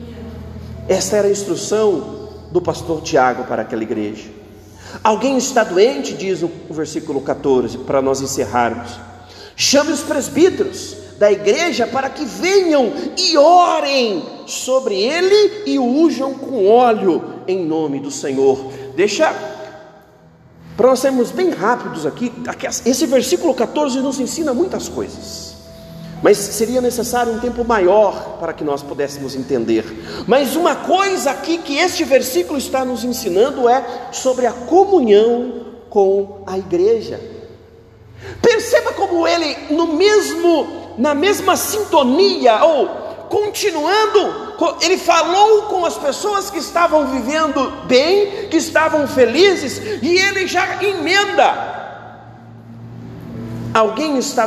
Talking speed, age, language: 120 wpm, 40-59, Portuguese